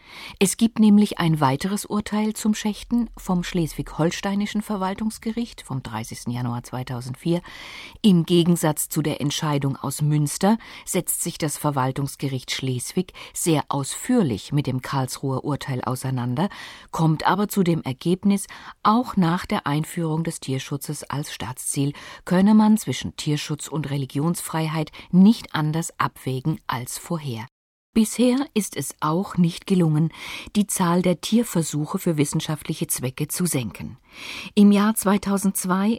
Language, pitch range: German, 135-190 Hz